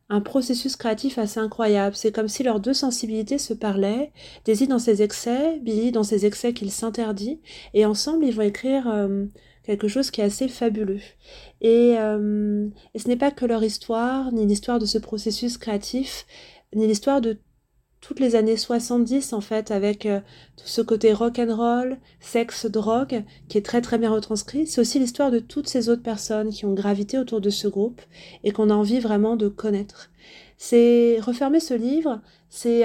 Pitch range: 205-245 Hz